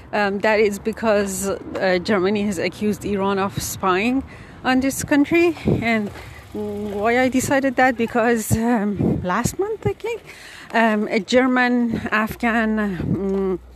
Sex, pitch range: female, 185-230 Hz